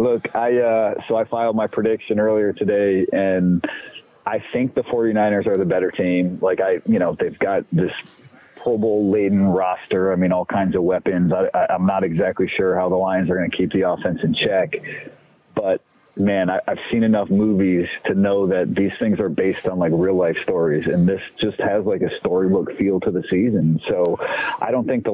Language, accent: English, American